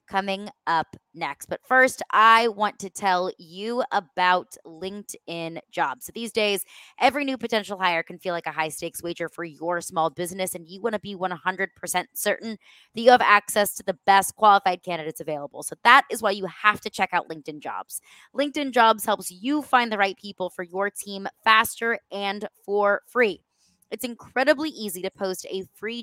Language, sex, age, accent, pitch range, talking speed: English, female, 20-39, American, 175-225 Hz, 185 wpm